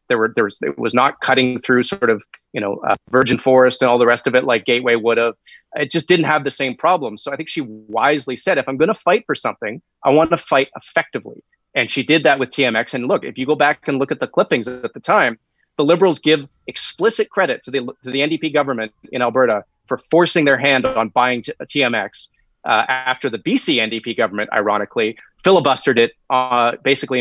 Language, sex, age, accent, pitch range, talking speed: English, male, 30-49, American, 125-155 Hz, 230 wpm